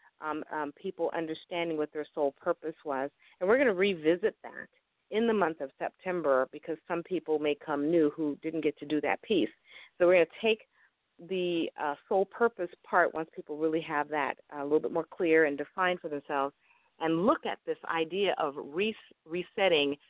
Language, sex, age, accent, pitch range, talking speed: English, female, 40-59, American, 145-185 Hz, 190 wpm